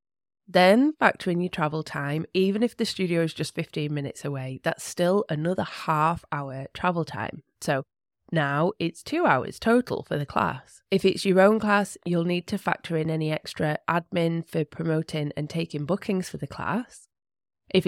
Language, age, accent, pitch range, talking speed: English, 20-39, British, 155-205 Hz, 175 wpm